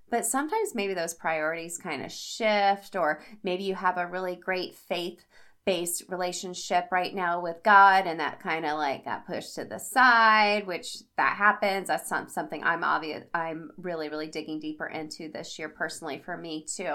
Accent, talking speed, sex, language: American, 175 wpm, female, English